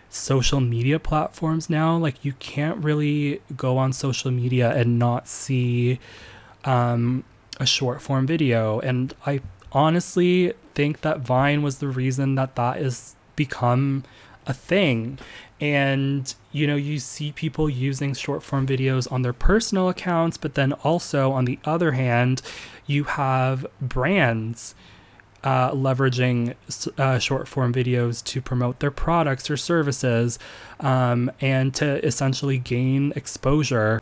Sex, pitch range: male, 125-145 Hz